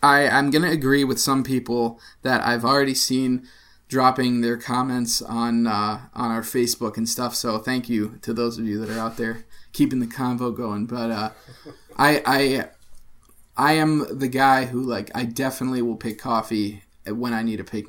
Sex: male